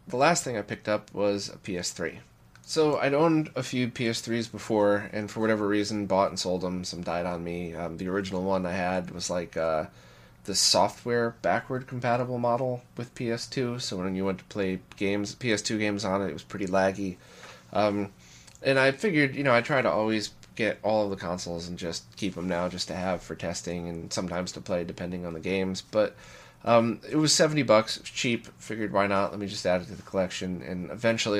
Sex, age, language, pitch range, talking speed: male, 20-39, English, 90-115 Hz, 215 wpm